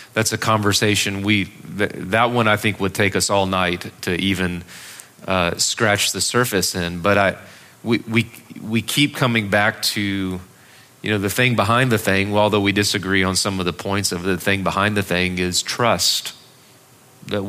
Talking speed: 180 wpm